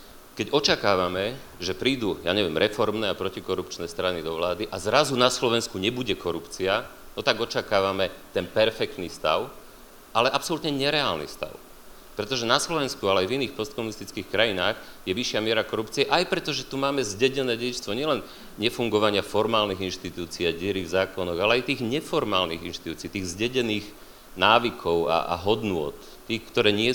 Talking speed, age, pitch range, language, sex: 150 wpm, 40-59, 95-130 Hz, Slovak, male